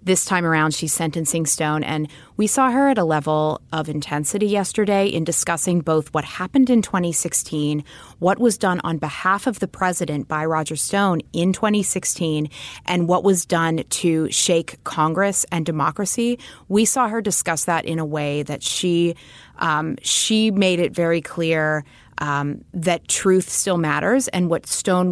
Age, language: 30-49, English